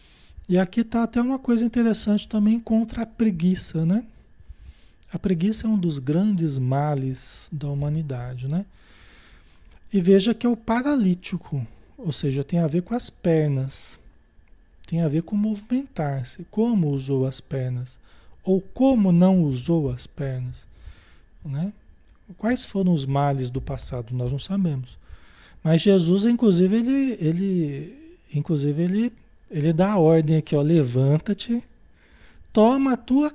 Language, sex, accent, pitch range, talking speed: Portuguese, male, Brazilian, 135-210 Hz, 140 wpm